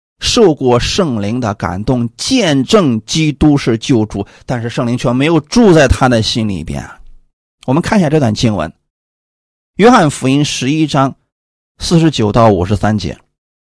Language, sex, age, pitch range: Chinese, male, 30-49, 115-170 Hz